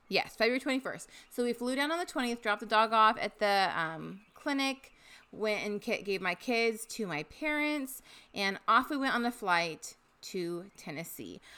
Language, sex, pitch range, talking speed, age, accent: English, female, 190-255 Hz, 180 wpm, 30-49, American